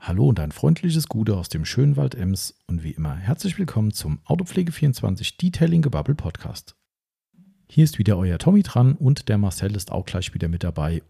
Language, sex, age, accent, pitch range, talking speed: German, male, 40-59, German, 105-135 Hz, 185 wpm